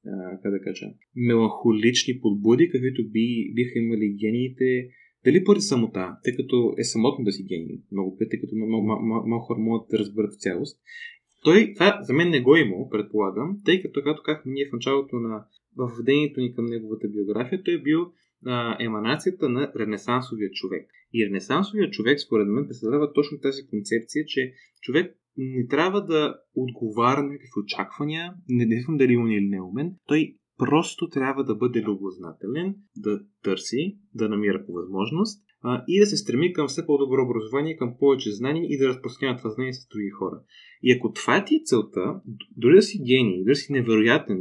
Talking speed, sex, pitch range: 170 wpm, male, 110-145 Hz